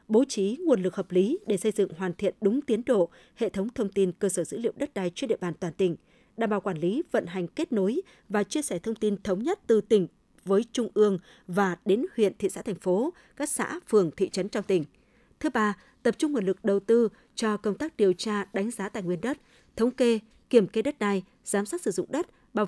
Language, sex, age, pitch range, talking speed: Vietnamese, female, 20-39, 190-240 Hz, 245 wpm